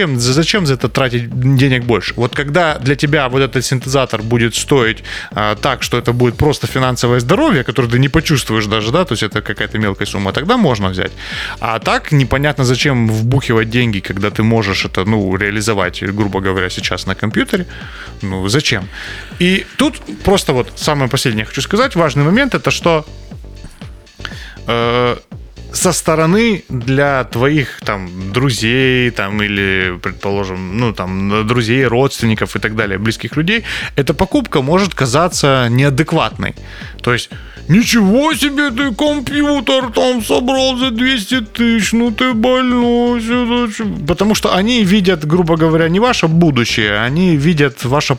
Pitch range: 110-170 Hz